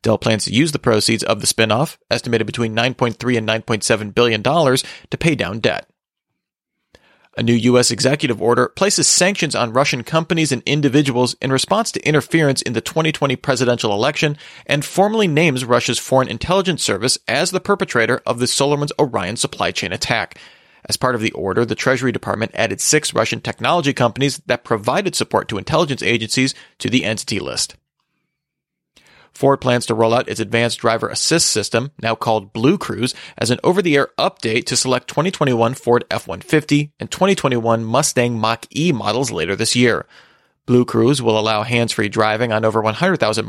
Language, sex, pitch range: English, male, 115-145 Hz